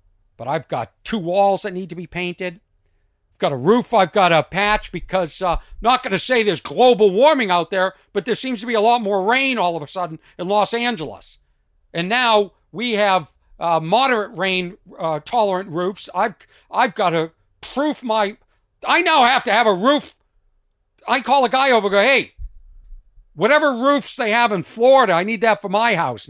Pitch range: 145-225 Hz